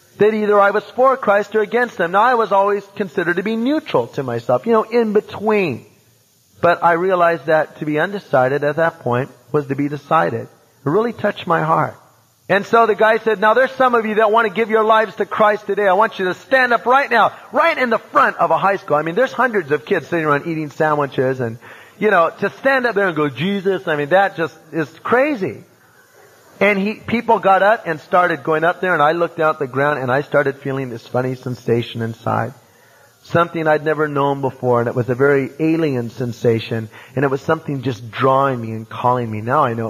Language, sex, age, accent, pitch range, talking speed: English, male, 30-49, American, 125-195 Hz, 230 wpm